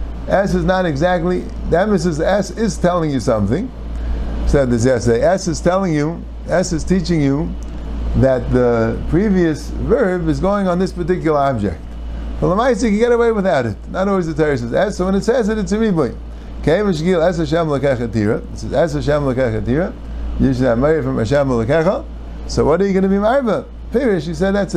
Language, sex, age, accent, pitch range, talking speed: English, male, 50-69, American, 125-185 Hz, 195 wpm